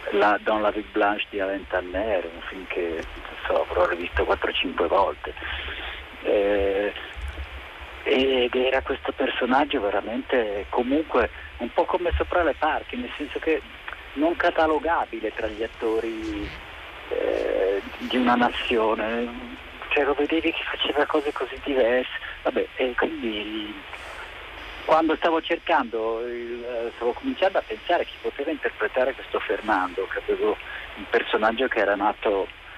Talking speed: 130 wpm